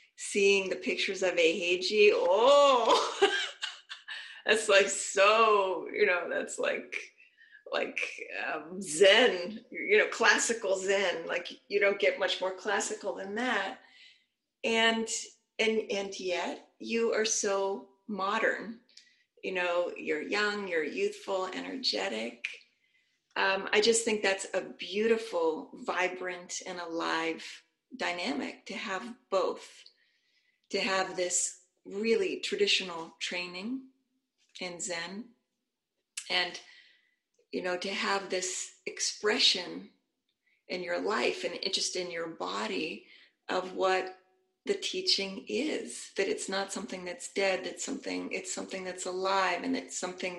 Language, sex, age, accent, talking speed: English, female, 30-49, American, 120 wpm